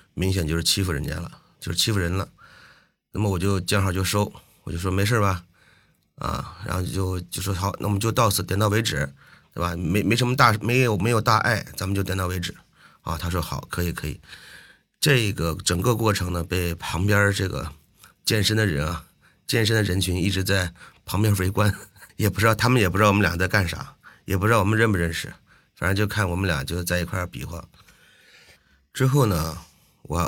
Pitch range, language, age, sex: 85-105 Hz, Chinese, 30-49, male